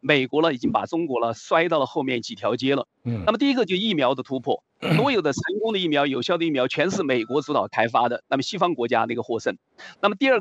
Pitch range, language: 135-195 Hz, Chinese